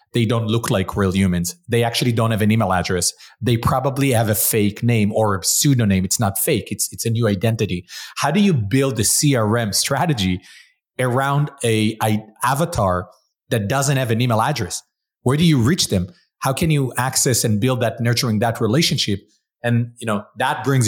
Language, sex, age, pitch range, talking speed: English, male, 30-49, 105-130 Hz, 190 wpm